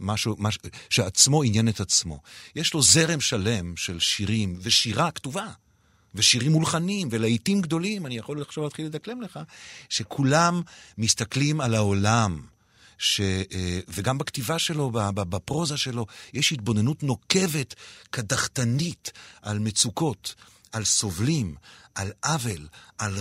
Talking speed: 115 wpm